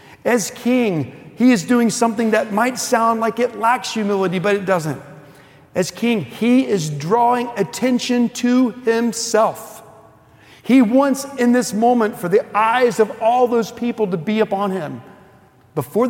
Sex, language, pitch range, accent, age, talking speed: male, English, 150-230 Hz, American, 50-69, 155 wpm